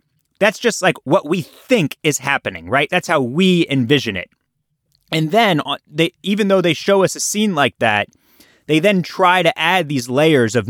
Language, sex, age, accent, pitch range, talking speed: English, male, 30-49, American, 125-165 Hz, 190 wpm